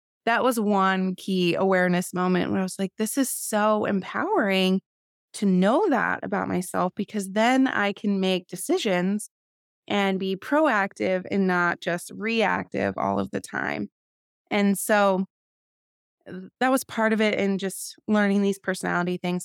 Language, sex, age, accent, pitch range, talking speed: English, female, 20-39, American, 180-215 Hz, 150 wpm